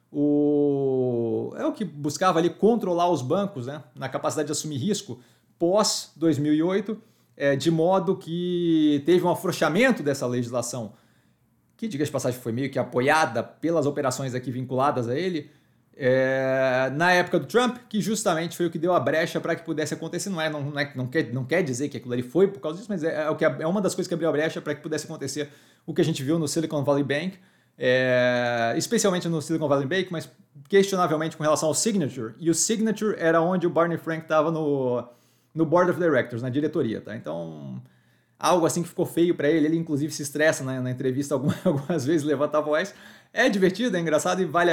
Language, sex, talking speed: Portuguese, male, 195 wpm